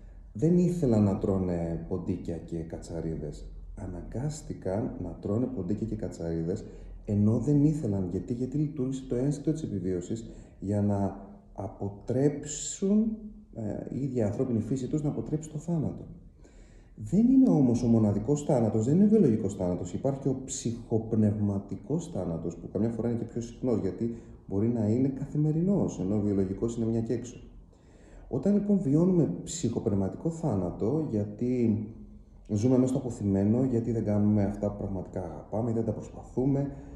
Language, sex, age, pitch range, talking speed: Greek, male, 30-49, 95-130 Hz, 145 wpm